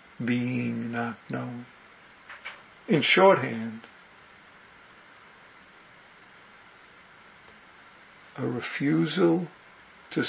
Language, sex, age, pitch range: English, male, 60-79, 115-145 Hz